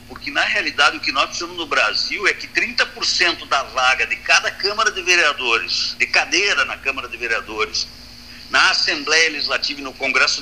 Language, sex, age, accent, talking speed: Portuguese, male, 60-79, Brazilian, 180 wpm